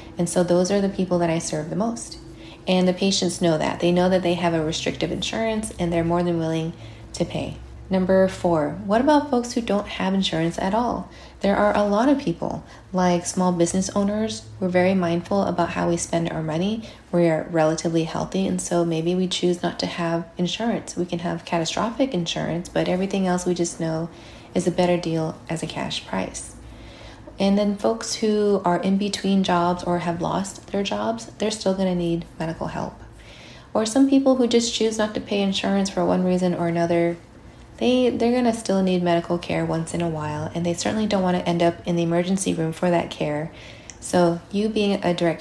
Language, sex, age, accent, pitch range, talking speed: English, female, 20-39, American, 170-195 Hz, 210 wpm